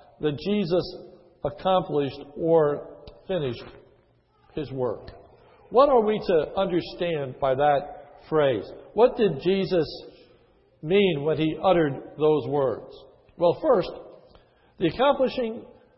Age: 60-79